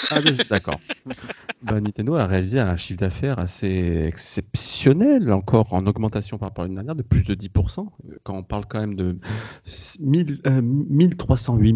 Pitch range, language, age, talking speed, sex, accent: 100-130 Hz, French, 30-49, 160 wpm, male, French